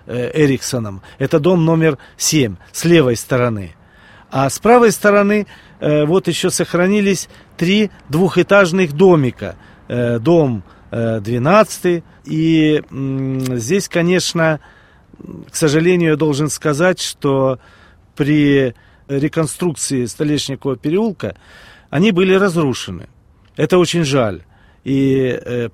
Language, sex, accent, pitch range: Russian, male, native, 120-175 Hz